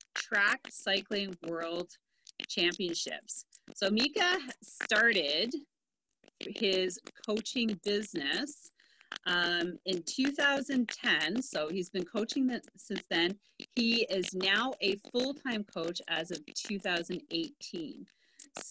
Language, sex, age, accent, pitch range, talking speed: English, female, 30-49, American, 180-245 Hz, 95 wpm